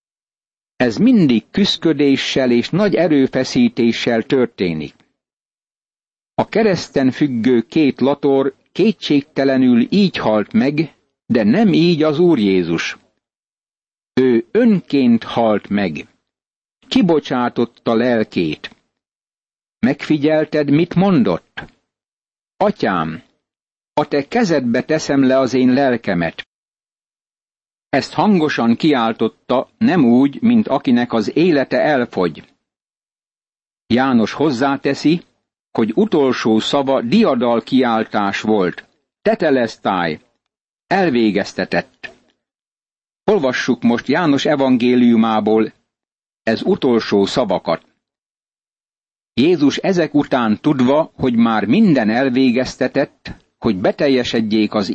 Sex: male